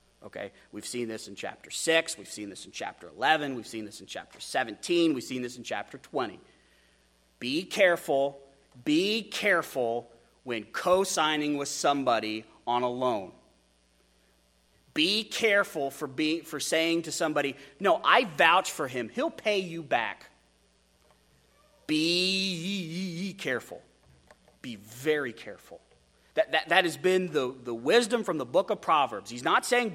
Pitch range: 130-215 Hz